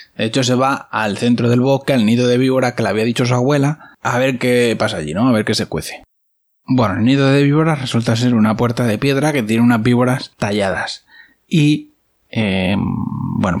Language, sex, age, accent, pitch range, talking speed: Spanish, male, 20-39, Spanish, 110-130 Hz, 210 wpm